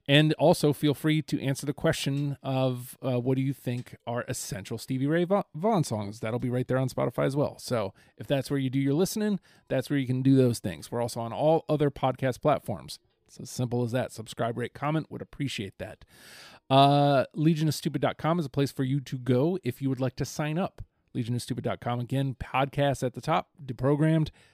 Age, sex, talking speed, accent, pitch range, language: 30-49, male, 210 wpm, American, 125-155 Hz, English